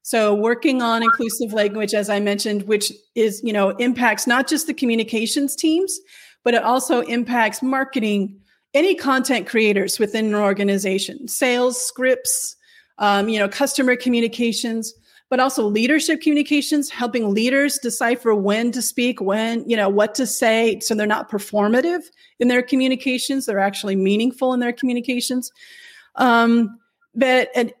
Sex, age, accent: female, 40-59, American